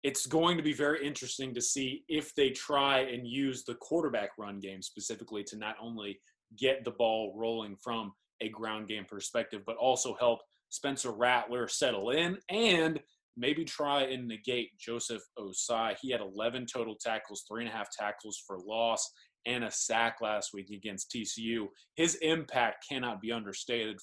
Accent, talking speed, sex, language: American, 170 wpm, male, English